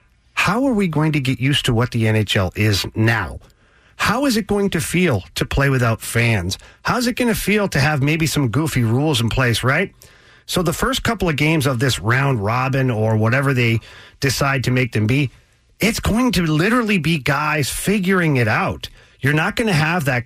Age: 40-59